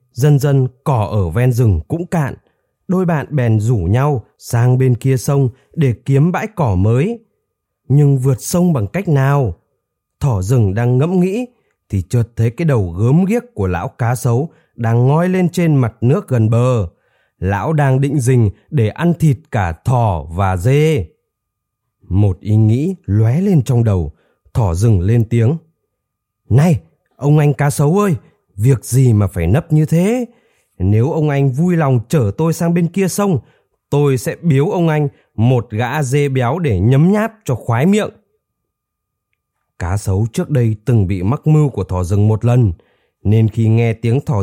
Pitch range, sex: 110-150 Hz, male